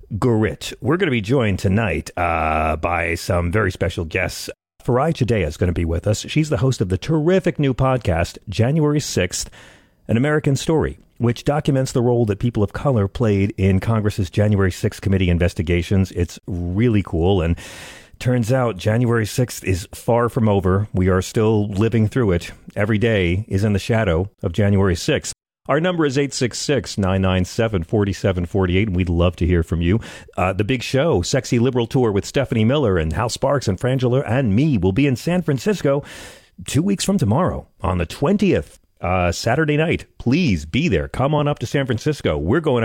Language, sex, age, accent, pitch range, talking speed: English, male, 40-59, American, 90-125 Hz, 180 wpm